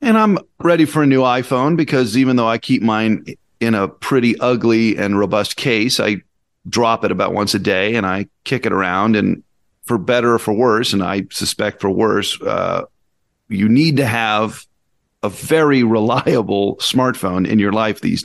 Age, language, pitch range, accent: 40-59, English, 100-125 Hz, American